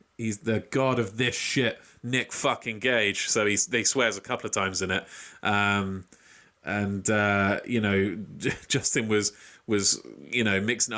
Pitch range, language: 95-115 Hz, English